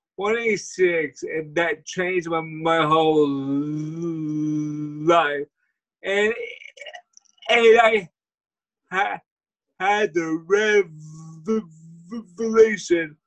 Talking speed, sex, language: 70 wpm, male, English